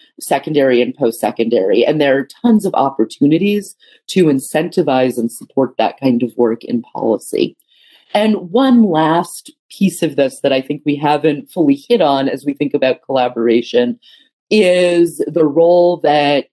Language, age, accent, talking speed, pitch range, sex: English, 30-49, American, 155 wpm, 140-195 Hz, female